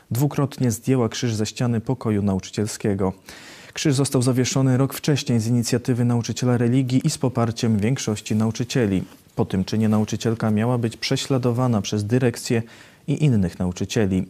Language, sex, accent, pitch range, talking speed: Polish, male, native, 110-130 Hz, 140 wpm